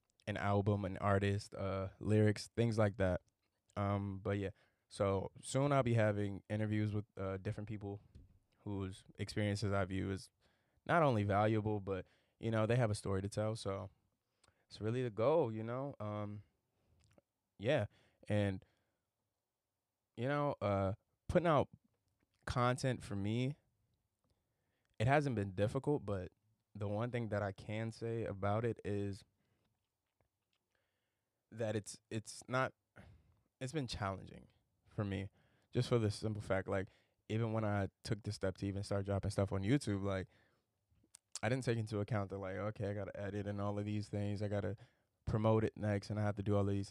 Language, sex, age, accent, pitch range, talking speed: English, male, 20-39, American, 100-115 Hz, 165 wpm